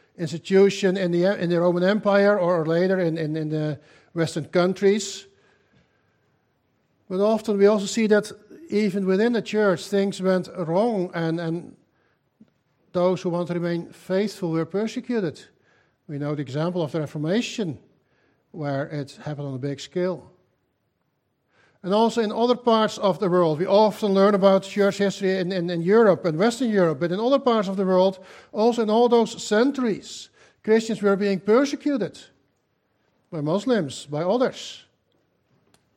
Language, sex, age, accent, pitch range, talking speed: English, male, 50-69, Dutch, 155-195 Hz, 155 wpm